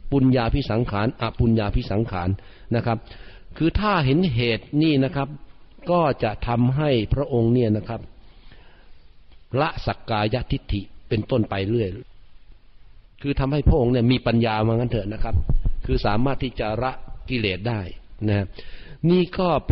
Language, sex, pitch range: Thai, male, 100-130 Hz